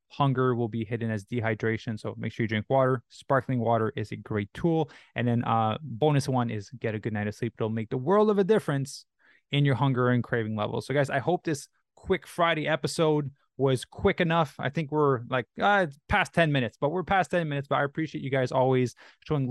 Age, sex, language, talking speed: 20-39, male, English, 230 wpm